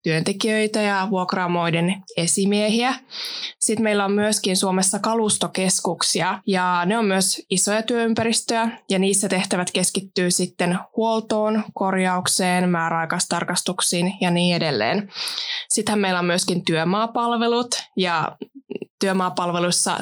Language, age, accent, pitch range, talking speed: Finnish, 20-39, native, 180-220 Hz, 100 wpm